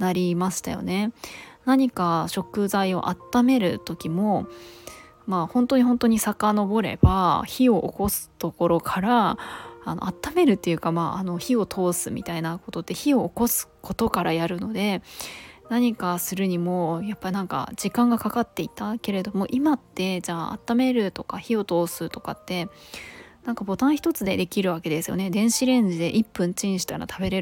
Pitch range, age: 180-230 Hz, 20-39